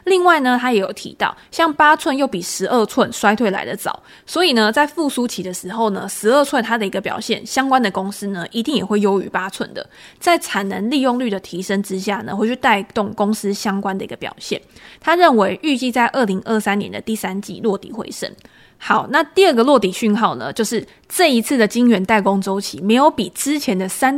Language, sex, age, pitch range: Chinese, female, 20-39, 200-260 Hz